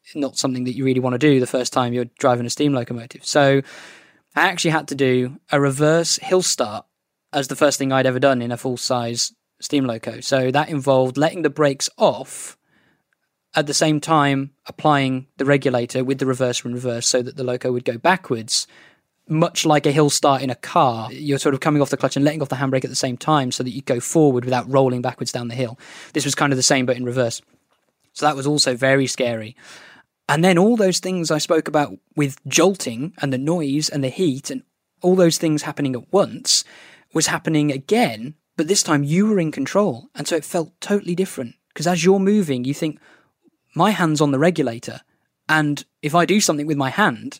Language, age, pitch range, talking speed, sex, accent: English, 10-29, 130-160 Hz, 220 wpm, male, British